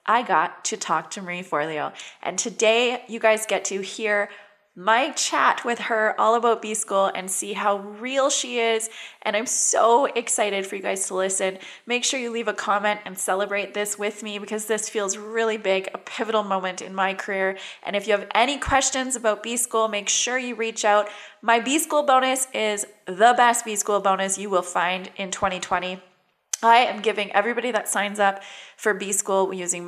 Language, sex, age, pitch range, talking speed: English, female, 20-39, 190-230 Hz, 190 wpm